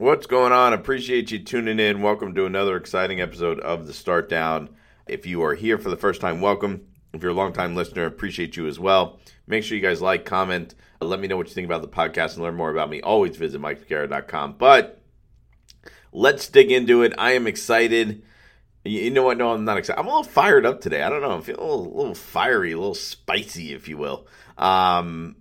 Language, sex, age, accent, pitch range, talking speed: English, male, 50-69, American, 85-115 Hz, 220 wpm